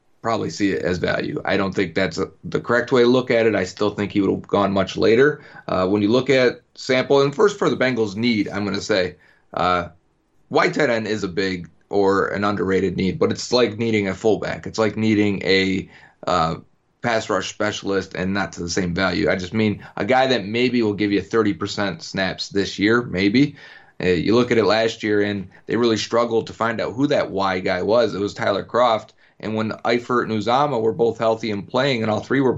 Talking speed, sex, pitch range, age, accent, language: 225 wpm, male, 100-120 Hz, 30-49, American, English